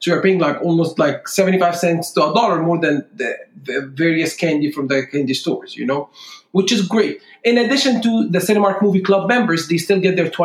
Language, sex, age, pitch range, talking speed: English, male, 40-59, 170-220 Hz, 220 wpm